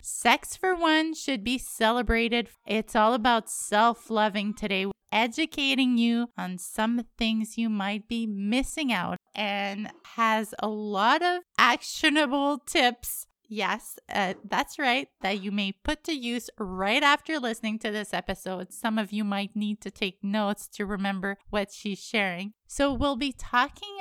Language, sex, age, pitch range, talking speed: English, female, 20-39, 205-280 Hz, 150 wpm